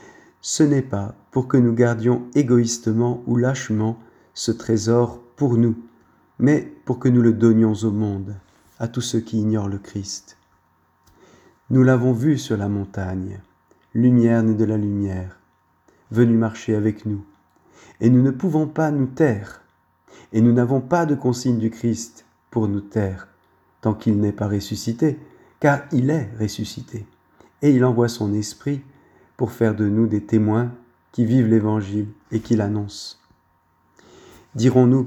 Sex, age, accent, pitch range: male, 40-59, French, 110-130 Hz